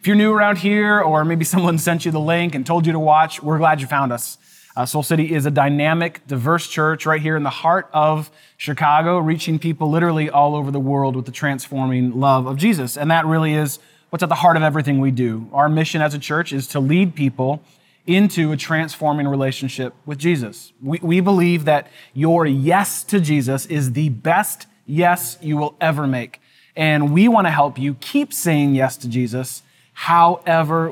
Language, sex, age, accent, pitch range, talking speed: English, male, 30-49, American, 145-170 Hz, 200 wpm